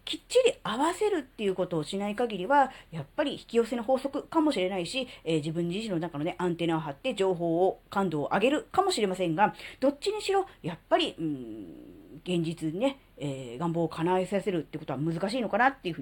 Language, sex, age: Japanese, female, 40-59